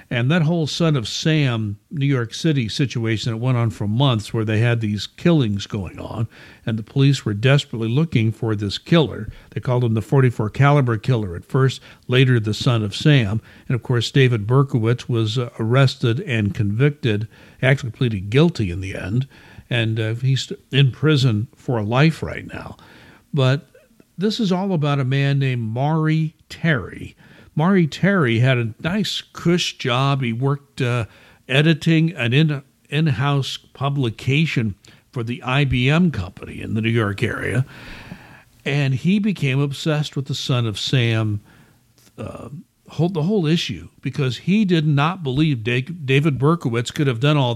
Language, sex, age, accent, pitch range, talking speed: English, male, 60-79, American, 115-150 Hz, 160 wpm